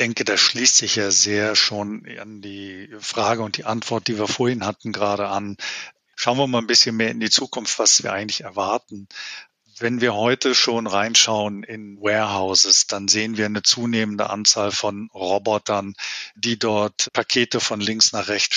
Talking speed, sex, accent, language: 180 wpm, male, German, German